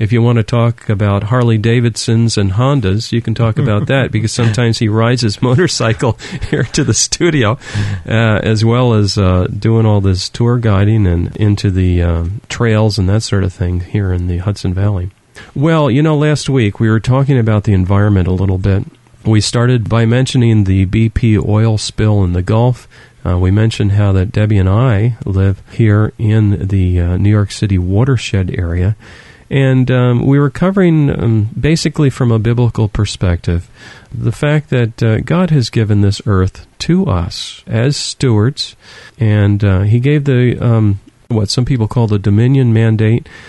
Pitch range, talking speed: 100-125 Hz, 180 wpm